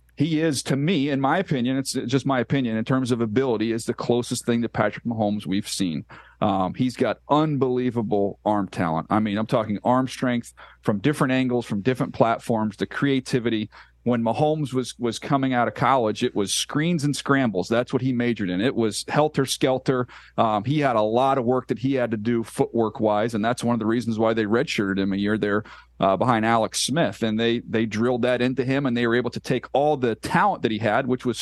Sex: male